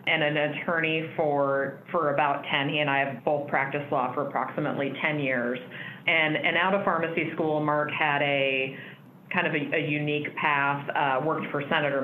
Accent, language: American, English